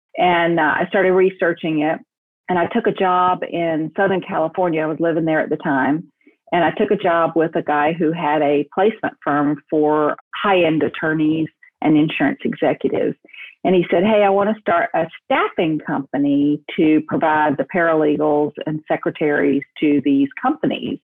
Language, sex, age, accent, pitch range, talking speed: English, female, 50-69, American, 155-185 Hz, 170 wpm